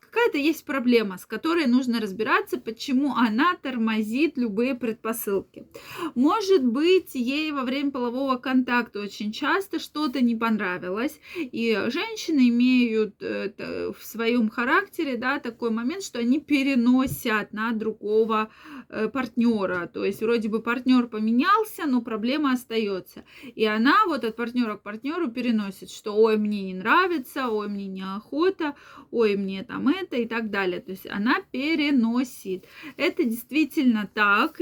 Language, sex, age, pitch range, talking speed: Russian, female, 20-39, 220-285 Hz, 135 wpm